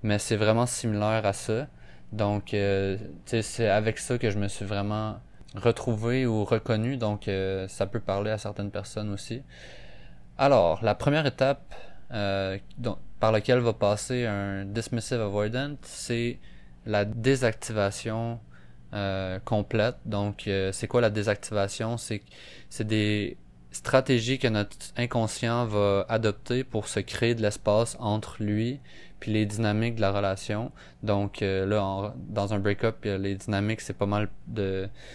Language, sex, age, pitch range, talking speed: French, male, 20-39, 100-115 Hz, 150 wpm